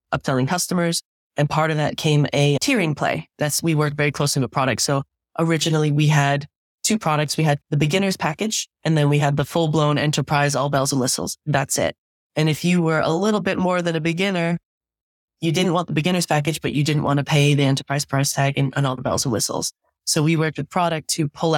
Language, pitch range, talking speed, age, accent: English, 140-160 Hz, 230 wpm, 20-39, American